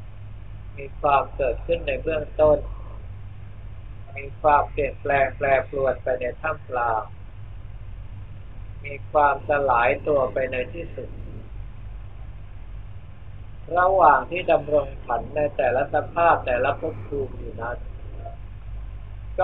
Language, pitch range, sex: Thai, 100-125 Hz, male